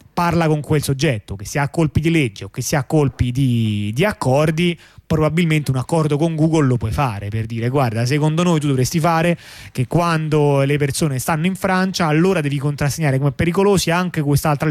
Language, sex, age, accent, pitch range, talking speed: Italian, male, 30-49, native, 130-170 Hz, 195 wpm